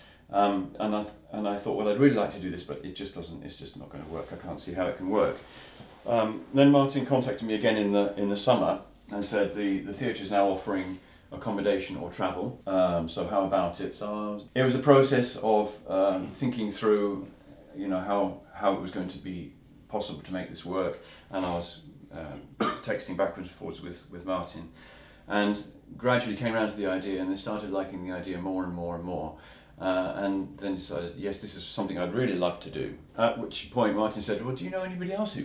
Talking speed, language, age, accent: 230 wpm, Finnish, 30-49, British